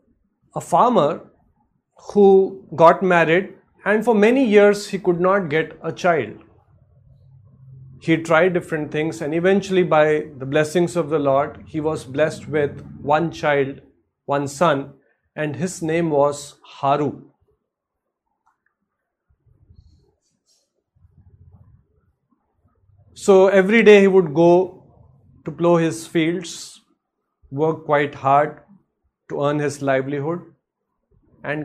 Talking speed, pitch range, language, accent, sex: 110 wpm, 145-190 Hz, English, Indian, male